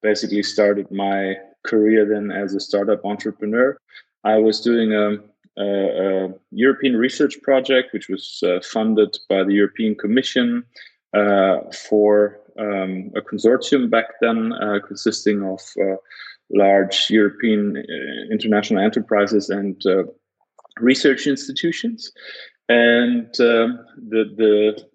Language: English